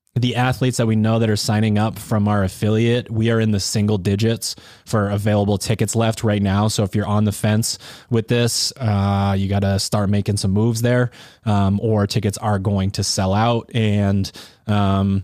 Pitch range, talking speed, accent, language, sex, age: 100-110 Hz, 200 wpm, American, English, male, 20-39